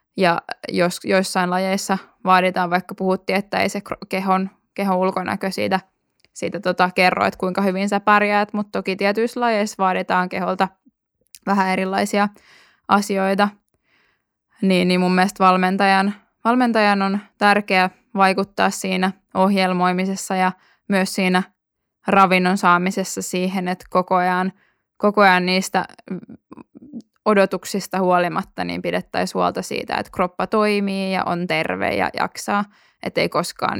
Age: 10-29